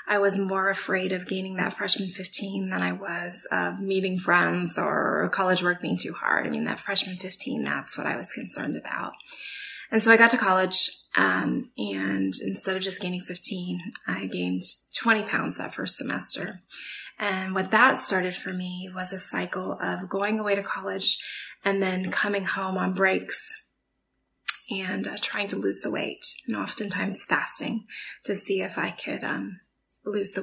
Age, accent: 20-39, American